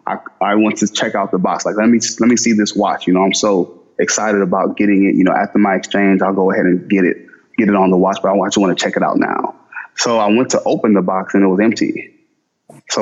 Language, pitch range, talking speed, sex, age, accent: English, 100-110 Hz, 280 wpm, male, 20-39, American